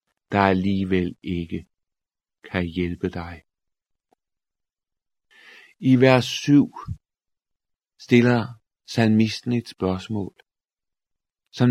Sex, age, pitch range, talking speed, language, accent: male, 50-69, 95-120 Hz, 70 wpm, Danish, native